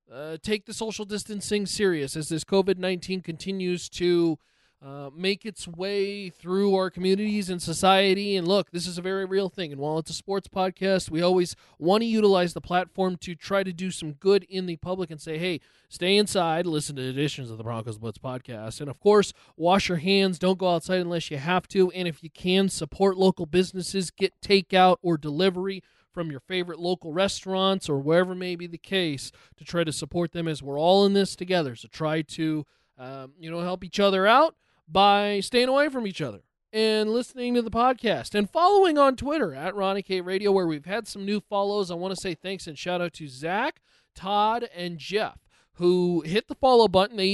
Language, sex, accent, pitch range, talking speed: English, male, American, 165-200 Hz, 205 wpm